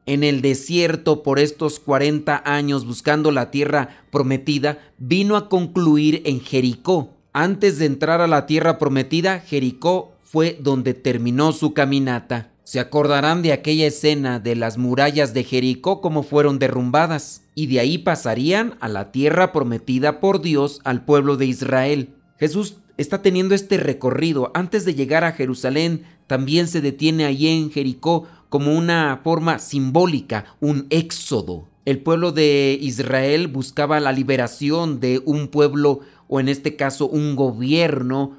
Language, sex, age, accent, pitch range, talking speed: Spanish, male, 40-59, Mexican, 135-160 Hz, 145 wpm